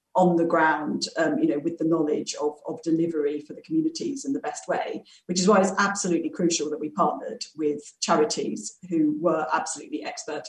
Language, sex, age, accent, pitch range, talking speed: English, female, 40-59, British, 155-185 Hz, 195 wpm